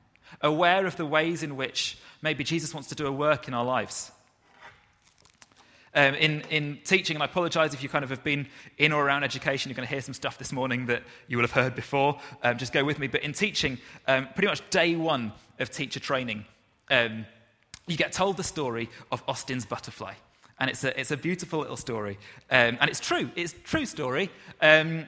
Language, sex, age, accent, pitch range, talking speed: English, male, 30-49, British, 120-155 Hz, 210 wpm